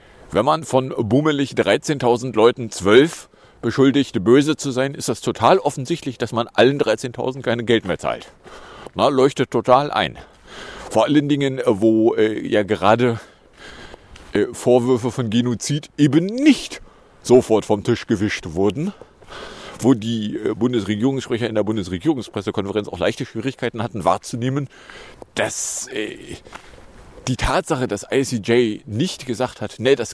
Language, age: English, 40-59